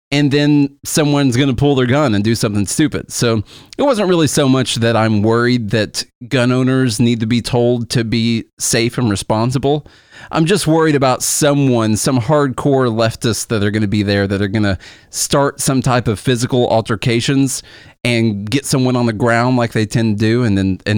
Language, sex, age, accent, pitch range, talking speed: English, male, 30-49, American, 105-140 Hz, 200 wpm